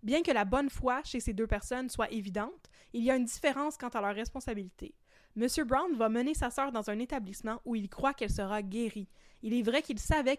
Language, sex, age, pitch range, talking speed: French, female, 20-39, 215-260 Hz, 230 wpm